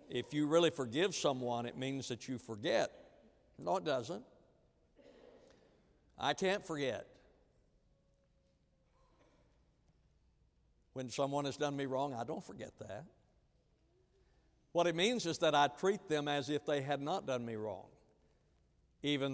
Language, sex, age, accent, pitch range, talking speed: English, male, 60-79, American, 135-190 Hz, 135 wpm